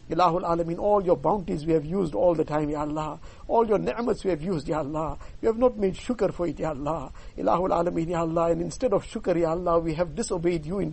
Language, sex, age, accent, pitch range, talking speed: English, male, 60-79, Indian, 155-195 Hz, 240 wpm